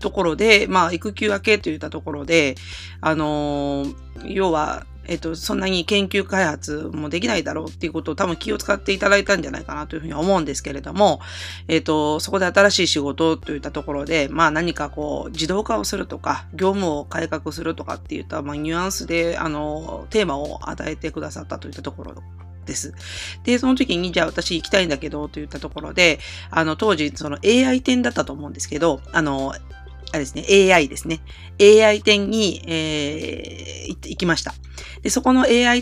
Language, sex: Japanese, female